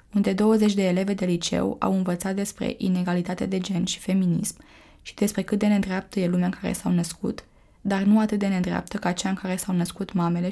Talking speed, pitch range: 210 wpm, 185-215 Hz